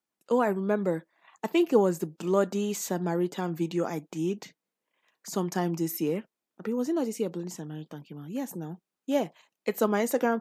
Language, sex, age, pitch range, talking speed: English, female, 20-39, 180-245 Hz, 200 wpm